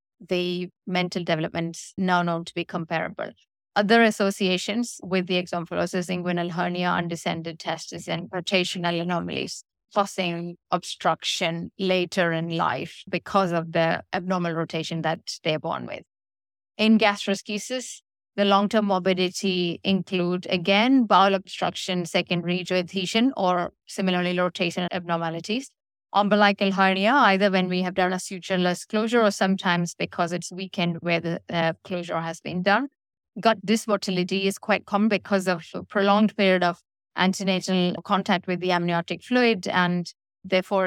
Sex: female